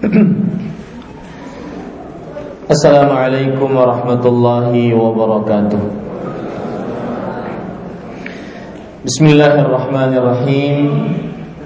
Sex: male